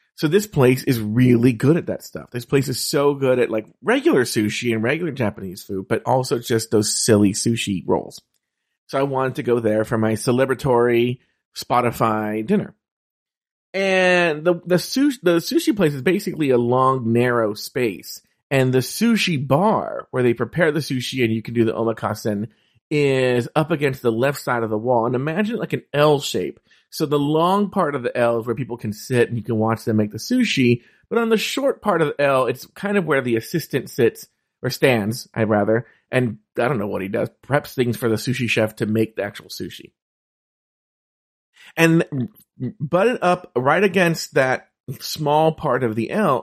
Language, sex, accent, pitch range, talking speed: English, male, American, 115-160 Hz, 195 wpm